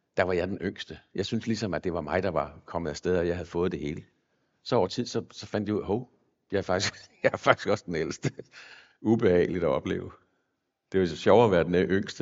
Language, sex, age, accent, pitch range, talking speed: Danish, male, 60-79, native, 100-150 Hz, 255 wpm